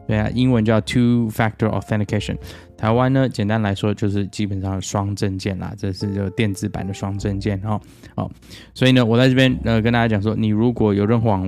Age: 20-39